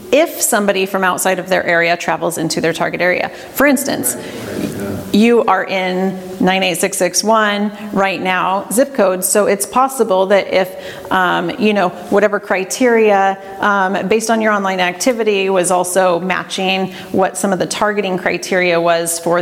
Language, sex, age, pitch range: English, female, 30-49, 180-215 Hz